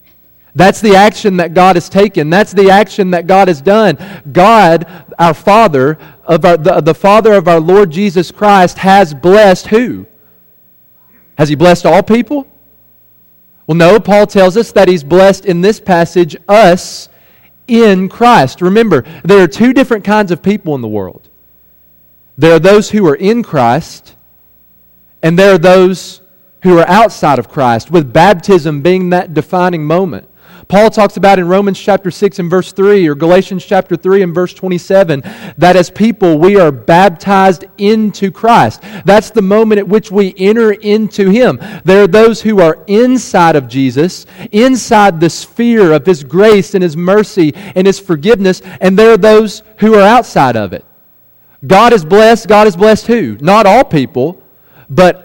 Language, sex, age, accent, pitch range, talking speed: English, male, 40-59, American, 160-205 Hz, 170 wpm